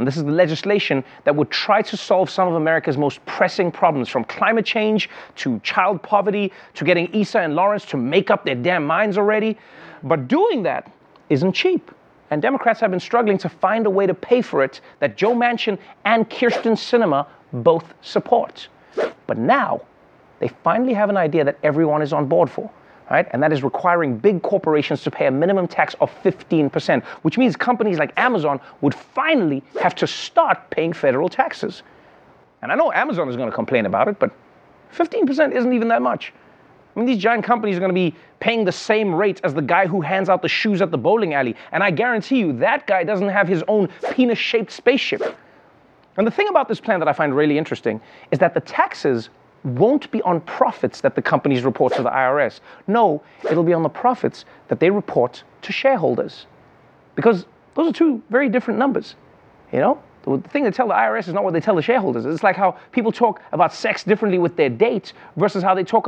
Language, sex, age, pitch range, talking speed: English, male, 30-49, 170-230 Hz, 205 wpm